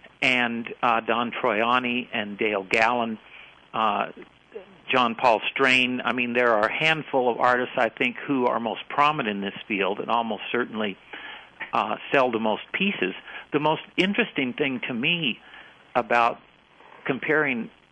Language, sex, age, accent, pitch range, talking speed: English, male, 50-69, American, 110-135 Hz, 145 wpm